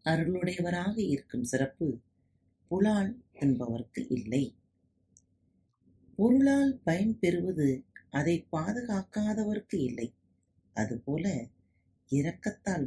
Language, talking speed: Tamil, 60 wpm